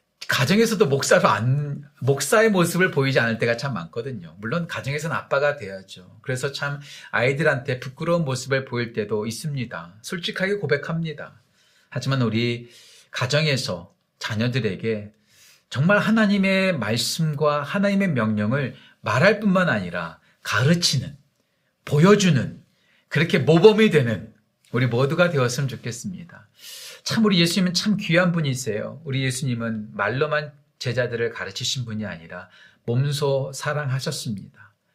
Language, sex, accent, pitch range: Korean, male, native, 115-160 Hz